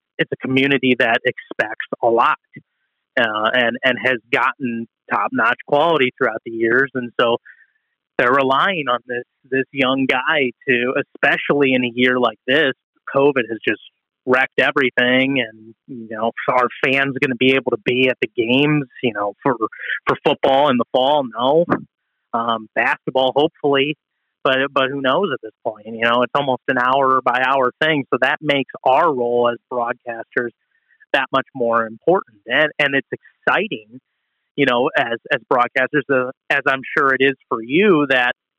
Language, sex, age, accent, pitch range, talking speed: English, male, 30-49, American, 120-140 Hz, 170 wpm